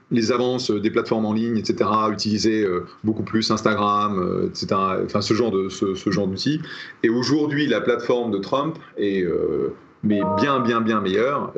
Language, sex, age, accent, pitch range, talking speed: French, male, 30-49, French, 110-150 Hz, 170 wpm